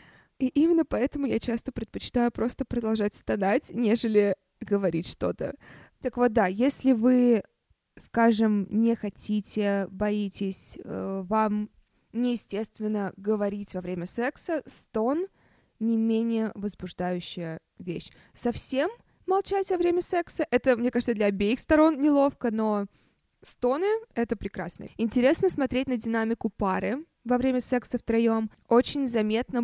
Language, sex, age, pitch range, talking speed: Russian, female, 20-39, 205-250 Hz, 120 wpm